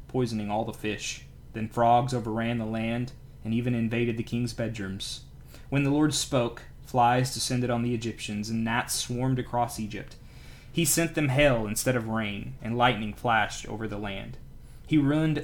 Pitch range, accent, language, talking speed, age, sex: 105-125 Hz, American, English, 170 wpm, 20-39, male